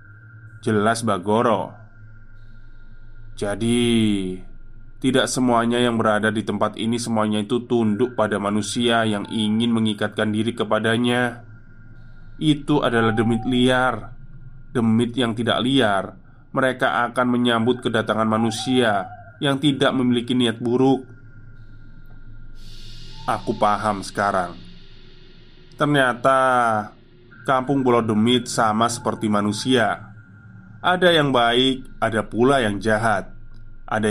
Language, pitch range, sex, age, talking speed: Indonesian, 110-130 Hz, male, 20-39, 100 wpm